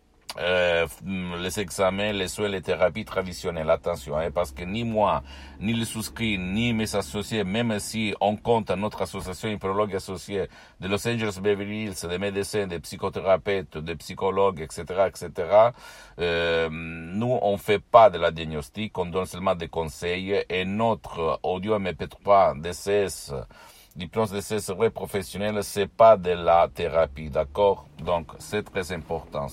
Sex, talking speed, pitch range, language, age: male, 155 wpm, 85-100 Hz, Italian, 60-79